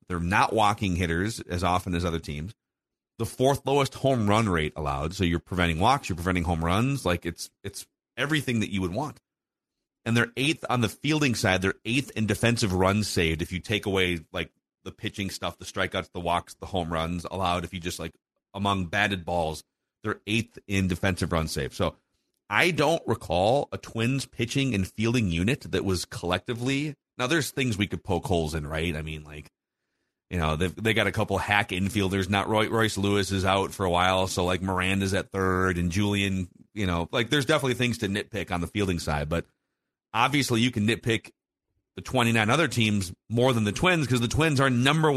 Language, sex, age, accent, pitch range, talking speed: English, male, 30-49, American, 90-125 Hz, 200 wpm